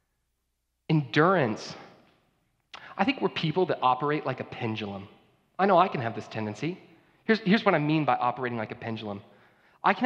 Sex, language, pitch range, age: male, English, 170-270 Hz, 30-49